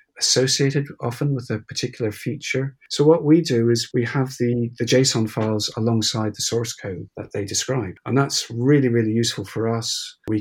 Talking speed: 185 wpm